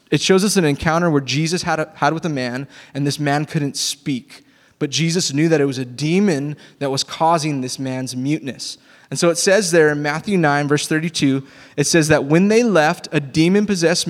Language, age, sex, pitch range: English, 20-39, male, 130-175 Hz